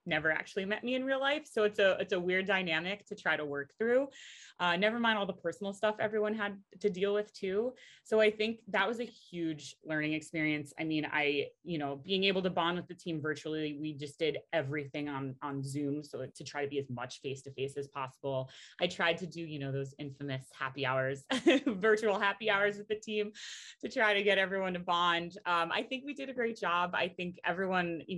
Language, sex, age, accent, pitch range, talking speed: English, female, 20-39, American, 140-190 Hz, 230 wpm